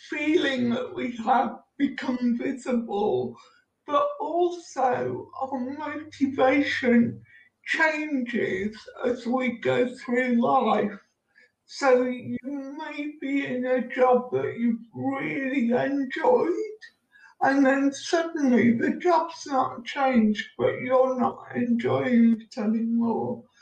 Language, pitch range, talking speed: English, 235-285 Hz, 100 wpm